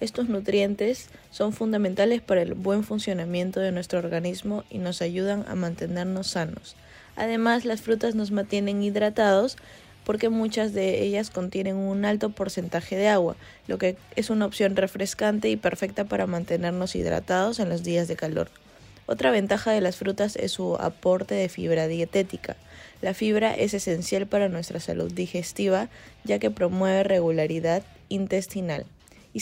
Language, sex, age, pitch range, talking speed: Spanish, female, 20-39, 180-210 Hz, 150 wpm